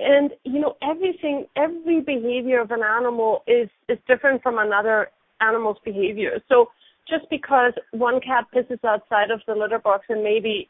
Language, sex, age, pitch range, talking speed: English, female, 30-49, 215-265 Hz, 165 wpm